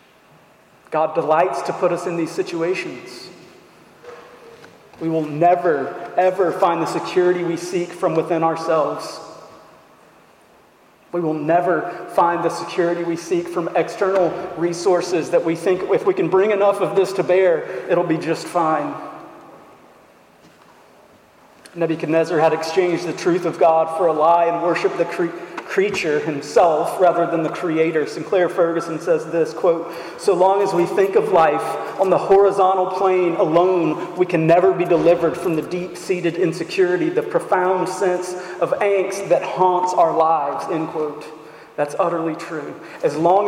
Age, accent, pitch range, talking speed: 40-59, American, 165-185 Hz, 150 wpm